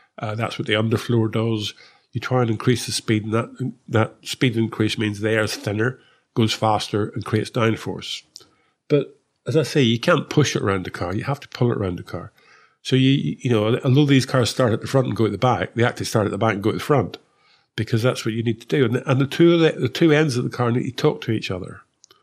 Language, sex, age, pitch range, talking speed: English, male, 50-69, 110-130 Hz, 265 wpm